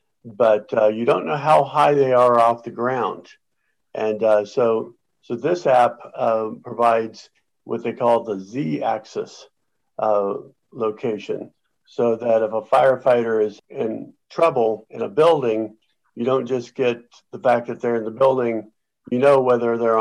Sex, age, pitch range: male, 50-69, 110-125 Hz